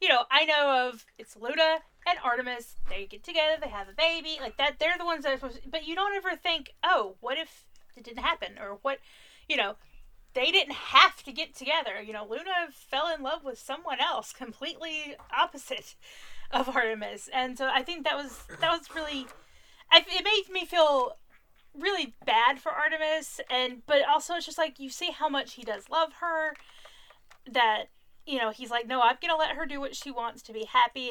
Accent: American